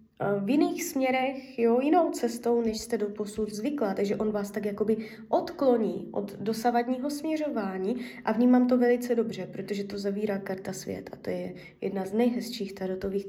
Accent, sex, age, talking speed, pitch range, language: native, female, 20-39, 165 wpm, 200-235 Hz, Czech